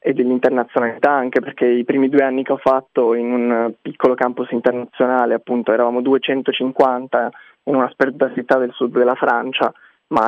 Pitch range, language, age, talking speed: 115-130 Hz, Italian, 20-39, 165 wpm